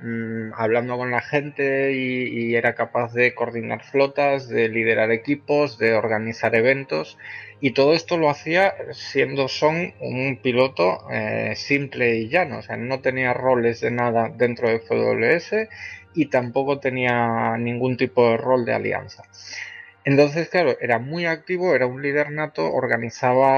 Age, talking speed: 20-39, 150 wpm